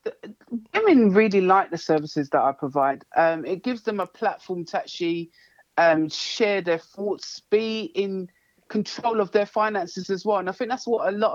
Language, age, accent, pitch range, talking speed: English, 50-69, British, 185-230 Hz, 185 wpm